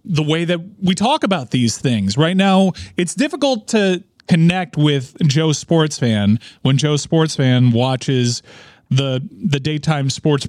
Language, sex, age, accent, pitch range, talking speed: English, male, 30-49, American, 130-175 Hz, 155 wpm